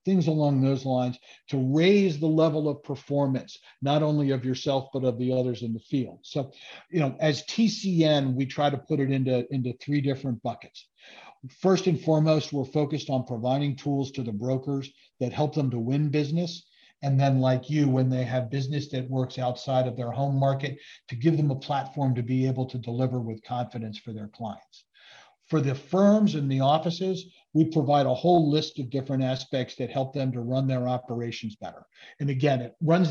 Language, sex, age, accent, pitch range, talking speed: English, male, 50-69, American, 130-145 Hz, 200 wpm